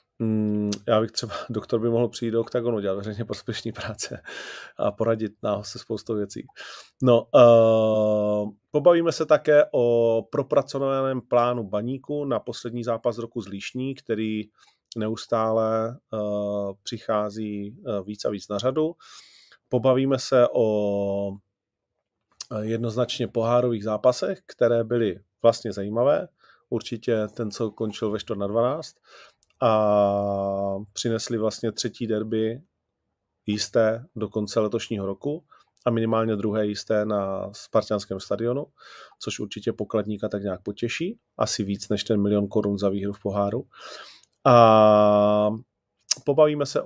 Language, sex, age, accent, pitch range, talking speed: Czech, male, 40-59, native, 105-125 Hz, 125 wpm